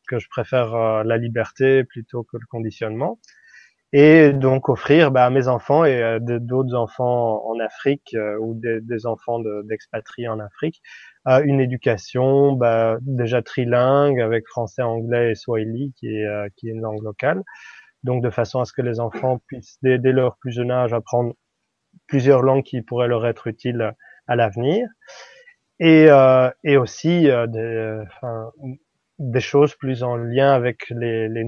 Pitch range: 115-130 Hz